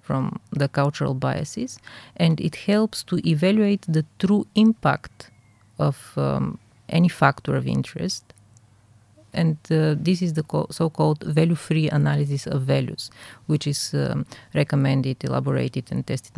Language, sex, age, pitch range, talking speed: English, female, 30-49, 135-170 Hz, 130 wpm